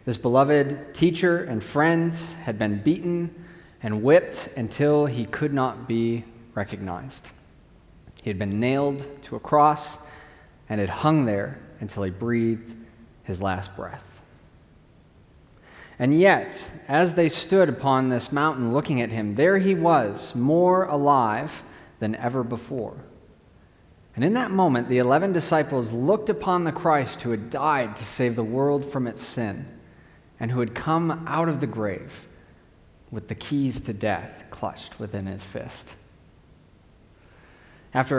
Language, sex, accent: English, male, American